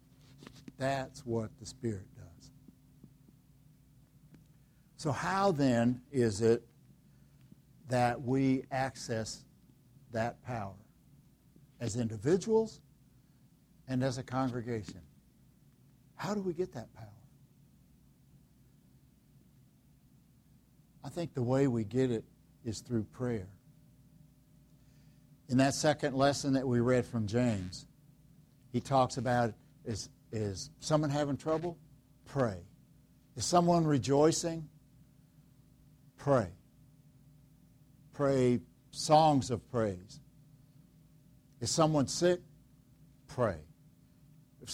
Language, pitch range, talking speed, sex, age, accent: English, 125-150 Hz, 95 wpm, male, 60-79, American